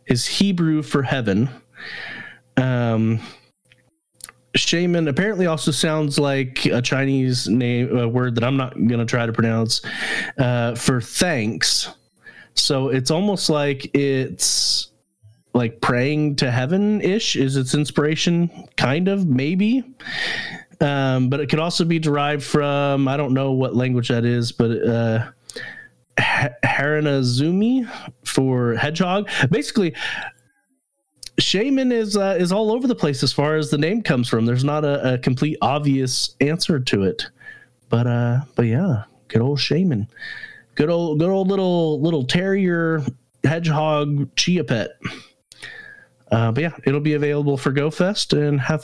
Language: English